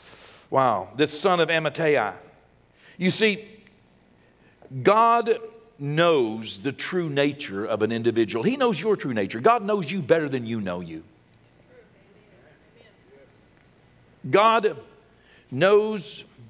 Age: 60-79